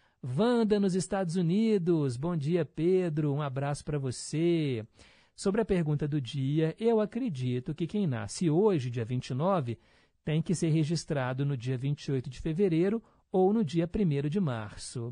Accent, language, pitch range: Brazilian, Portuguese, 135-175 Hz